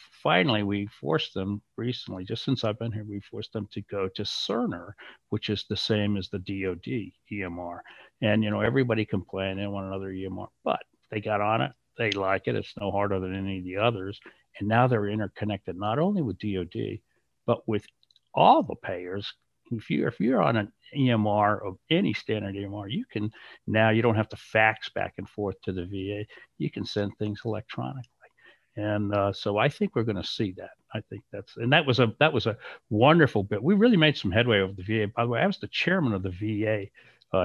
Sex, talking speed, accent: male, 215 wpm, American